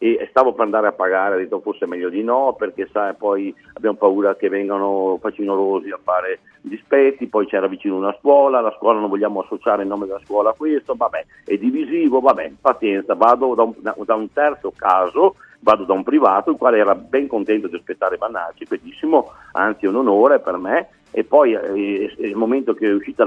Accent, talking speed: native, 200 wpm